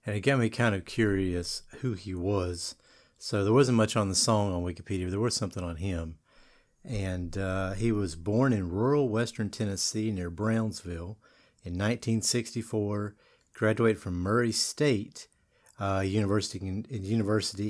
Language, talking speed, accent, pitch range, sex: English, 155 wpm, American, 95-120 Hz, male